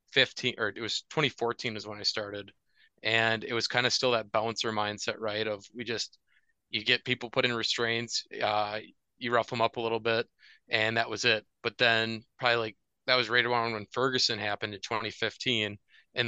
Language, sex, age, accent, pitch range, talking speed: English, male, 20-39, American, 110-125 Hz, 200 wpm